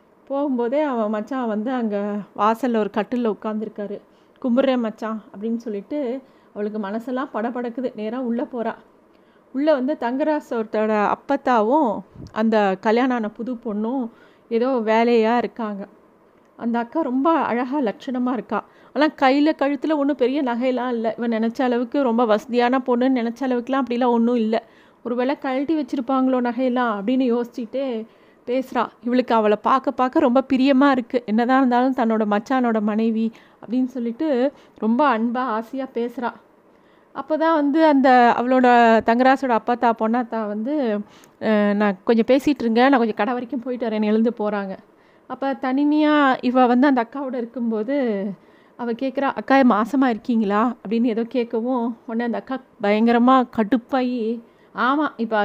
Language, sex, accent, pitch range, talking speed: Tamil, female, native, 225-265 Hz, 130 wpm